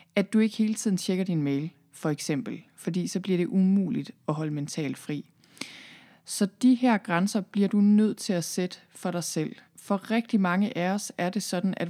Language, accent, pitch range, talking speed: Danish, native, 165-200 Hz, 205 wpm